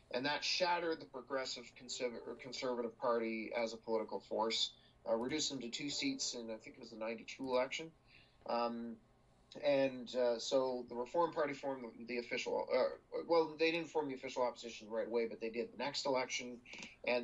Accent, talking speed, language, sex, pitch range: American, 190 wpm, English, male, 120-145 Hz